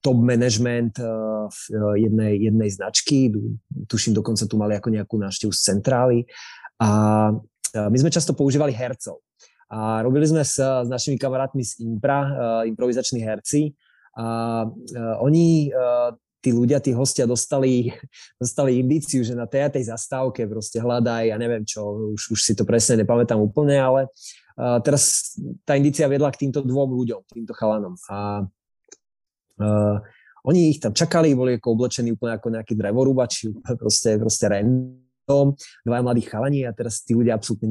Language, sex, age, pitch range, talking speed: Slovak, male, 20-39, 110-135 Hz, 155 wpm